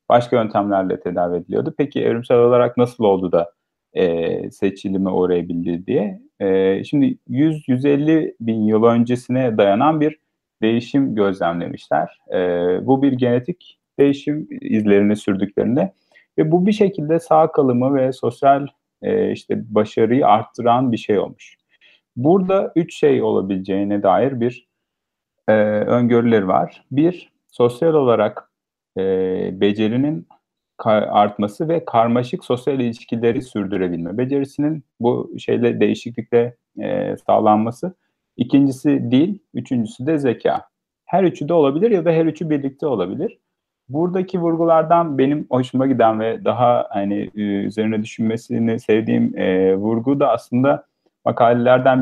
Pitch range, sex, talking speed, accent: 105-145 Hz, male, 115 wpm, native